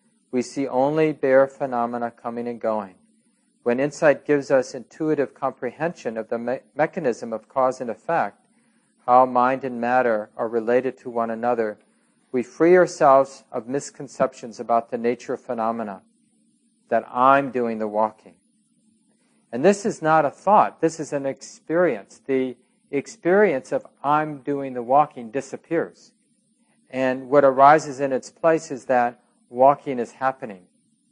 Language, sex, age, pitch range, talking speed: English, male, 40-59, 120-185 Hz, 145 wpm